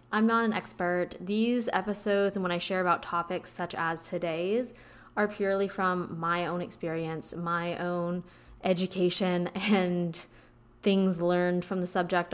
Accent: American